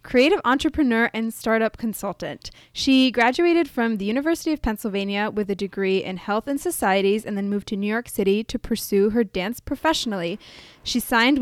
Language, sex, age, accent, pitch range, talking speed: English, female, 10-29, American, 210-265 Hz, 175 wpm